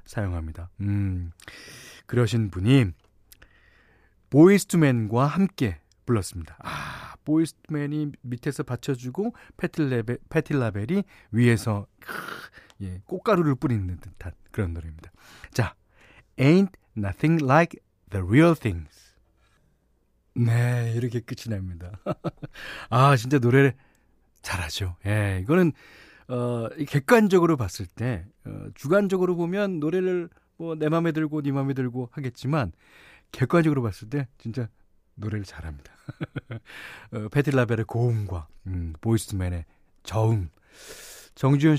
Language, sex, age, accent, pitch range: Korean, male, 40-59, native, 100-150 Hz